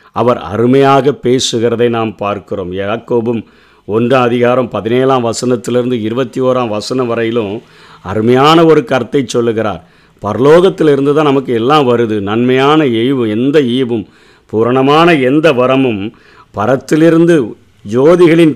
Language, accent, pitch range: Tamil, native, 120-165 Hz